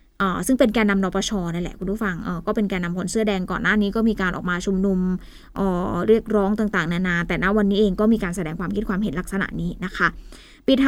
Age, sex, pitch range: 20-39, female, 195-230 Hz